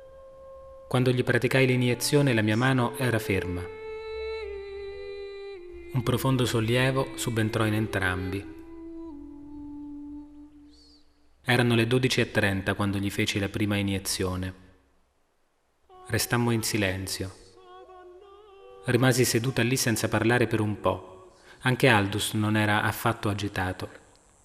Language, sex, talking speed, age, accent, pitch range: Italian, male, 100 wpm, 30-49, native, 105-145 Hz